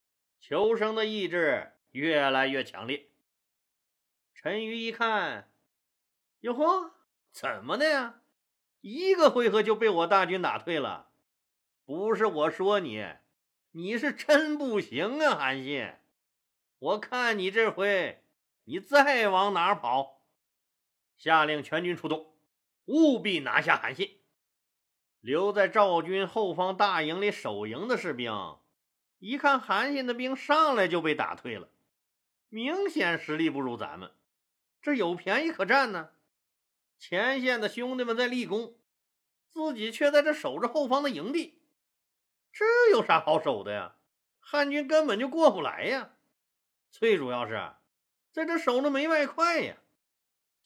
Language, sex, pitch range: Chinese, male, 170-280 Hz